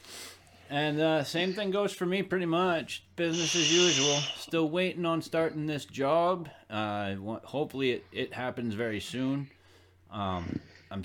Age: 30-49